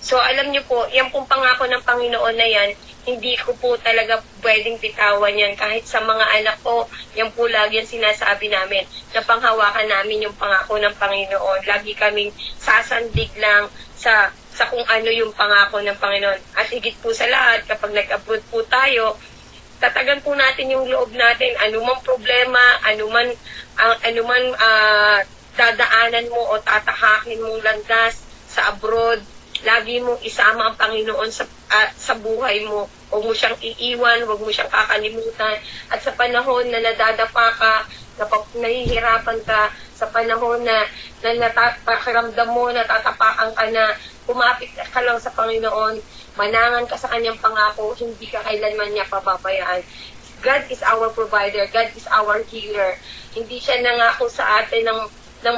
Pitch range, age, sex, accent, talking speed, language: 215-235 Hz, 20-39, female, native, 155 wpm, Filipino